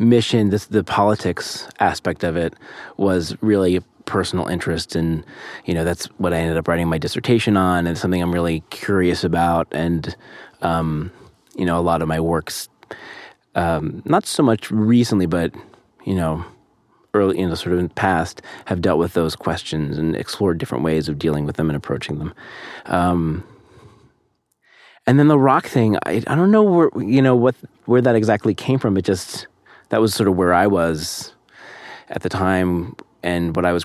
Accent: American